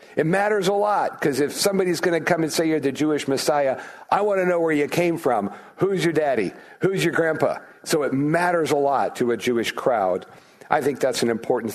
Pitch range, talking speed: 120-180 Hz, 225 wpm